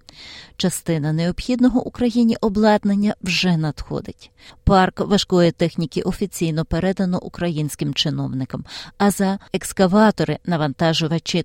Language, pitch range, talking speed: Ukrainian, 170-205 Hz, 90 wpm